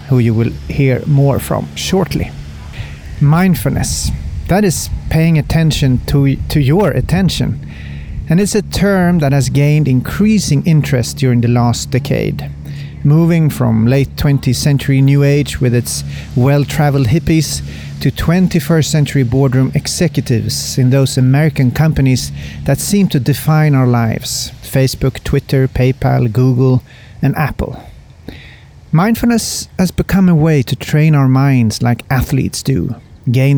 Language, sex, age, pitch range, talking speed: Swedish, male, 40-59, 125-160 Hz, 135 wpm